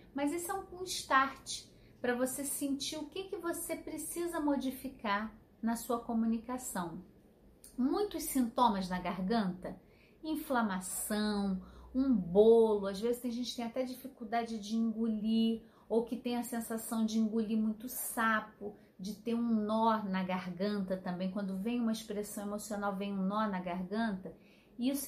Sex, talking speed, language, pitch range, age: female, 145 wpm, Portuguese, 205-255 Hz, 30-49